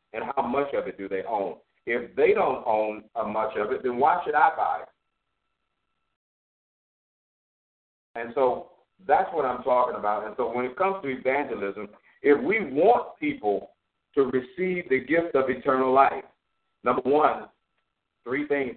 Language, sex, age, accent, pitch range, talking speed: English, male, 50-69, American, 105-130 Hz, 165 wpm